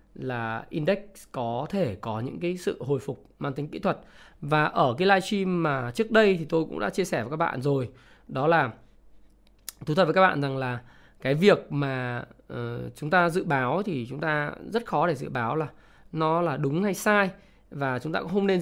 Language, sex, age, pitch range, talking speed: Vietnamese, male, 20-39, 130-190 Hz, 220 wpm